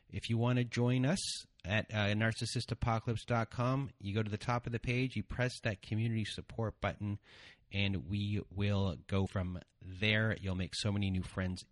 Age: 30-49